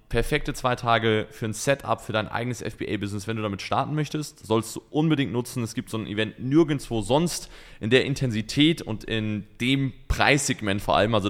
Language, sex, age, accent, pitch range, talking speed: German, male, 20-39, German, 100-125 Hz, 190 wpm